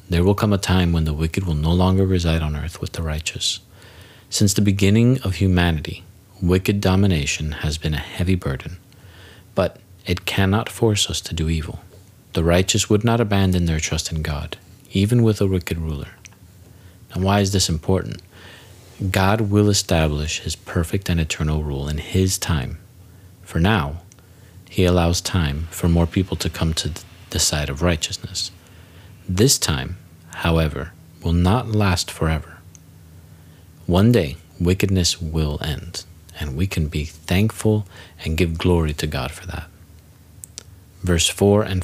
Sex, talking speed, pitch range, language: male, 155 wpm, 85-100 Hz, English